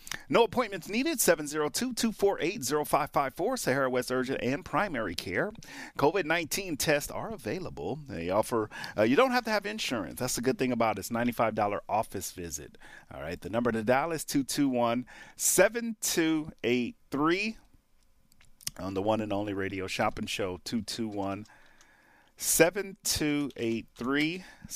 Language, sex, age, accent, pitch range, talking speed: English, male, 30-49, American, 100-150 Hz, 120 wpm